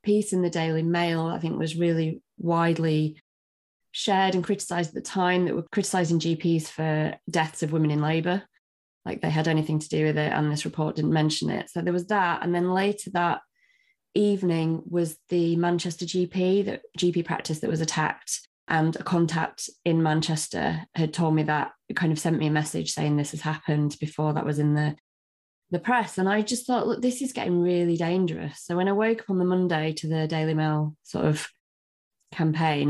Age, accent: 20-39, British